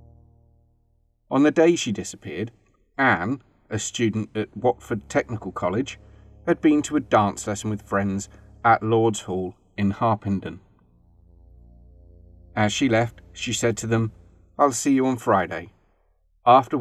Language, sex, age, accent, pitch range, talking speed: English, male, 40-59, British, 100-120 Hz, 135 wpm